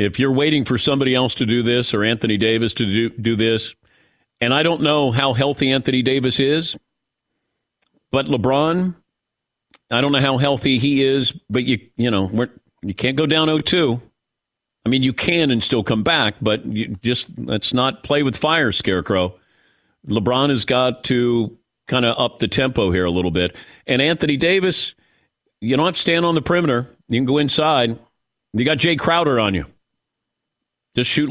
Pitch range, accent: 105-145 Hz, American